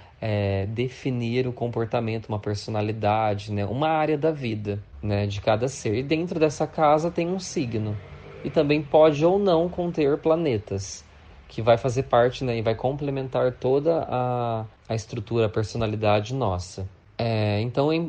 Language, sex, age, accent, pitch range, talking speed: Portuguese, male, 20-39, Brazilian, 110-140 Hz, 145 wpm